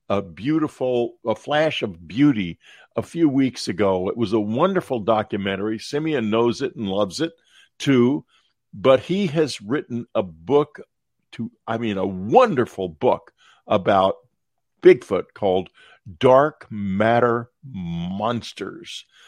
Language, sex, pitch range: English, male, 110-165 Hz